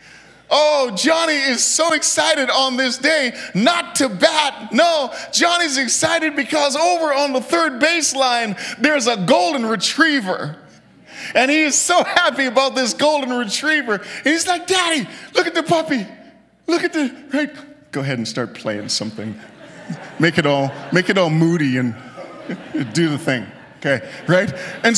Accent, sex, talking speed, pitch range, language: American, male, 155 wpm, 230-320 Hz, English